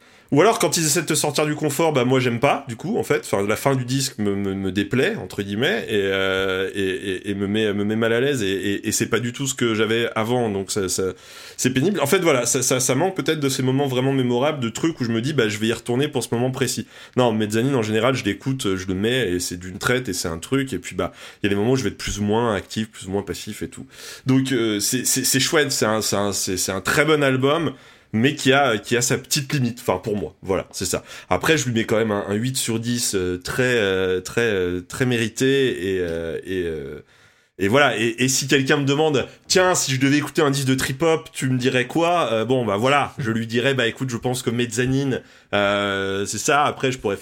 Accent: French